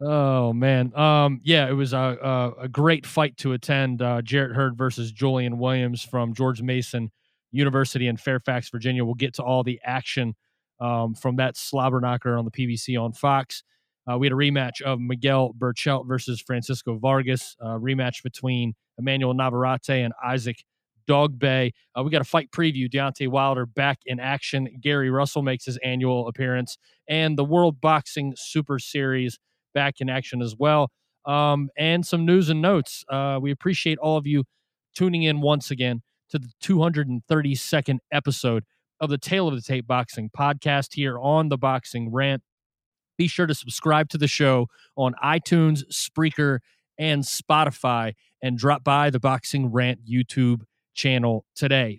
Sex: male